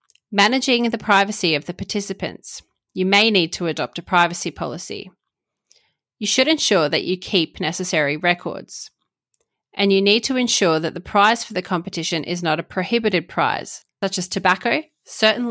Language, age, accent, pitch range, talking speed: English, 30-49, Australian, 170-215 Hz, 165 wpm